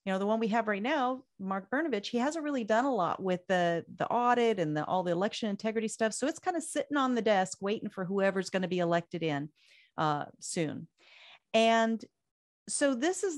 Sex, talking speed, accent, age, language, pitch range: female, 220 wpm, American, 40-59, English, 190-255 Hz